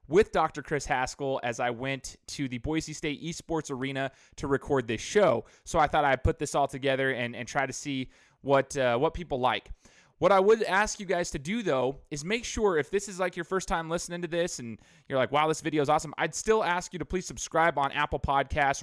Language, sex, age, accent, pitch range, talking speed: English, male, 20-39, American, 135-170 Hz, 240 wpm